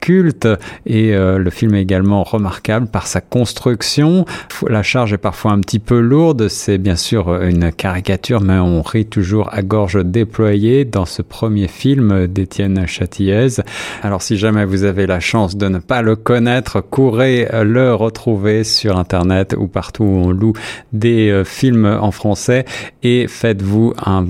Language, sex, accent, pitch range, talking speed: French, male, French, 95-115 Hz, 160 wpm